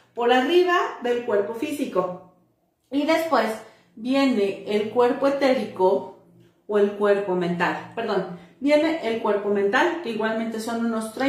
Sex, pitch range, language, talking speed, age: female, 195-255 Hz, Spanish, 130 wpm, 40-59